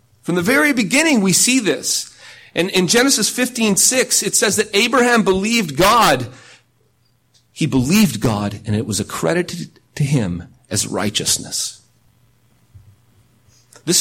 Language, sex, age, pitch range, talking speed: English, male, 40-59, 120-185 Hz, 130 wpm